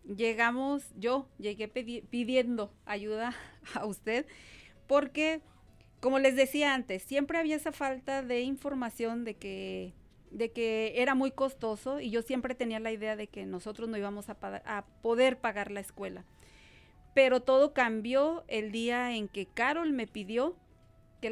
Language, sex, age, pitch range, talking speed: Spanish, female, 40-59, 215-260 Hz, 155 wpm